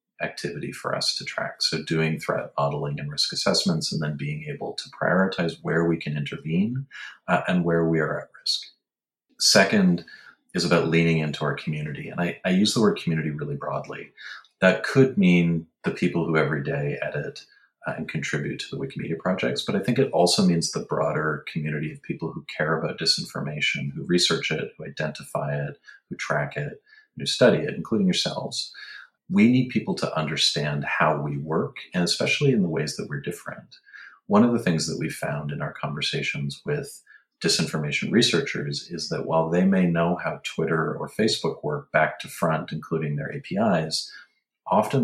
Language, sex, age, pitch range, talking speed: English, male, 40-59, 75-95 Hz, 185 wpm